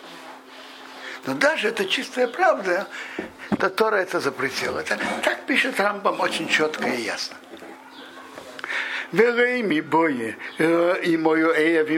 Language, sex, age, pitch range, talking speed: Russian, male, 60-79, 155-215 Hz, 85 wpm